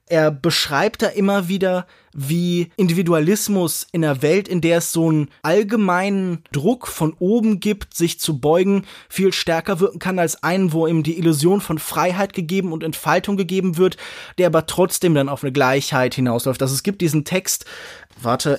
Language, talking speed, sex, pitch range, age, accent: German, 175 wpm, male, 150-185 Hz, 20-39, German